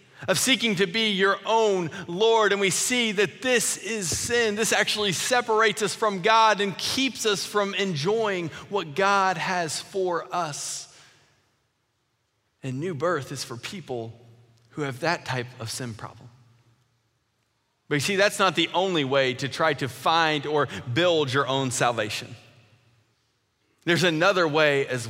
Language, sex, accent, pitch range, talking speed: English, male, American, 135-205 Hz, 155 wpm